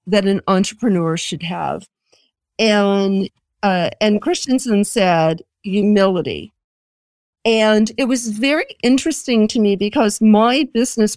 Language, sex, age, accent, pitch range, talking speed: English, female, 50-69, American, 200-245 Hz, 115 wpm